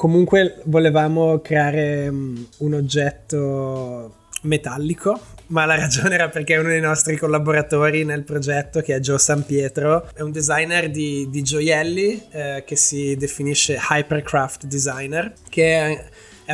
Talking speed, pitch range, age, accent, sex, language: 130 wpm, 130-155 Hz, 20-39, native, male, Italian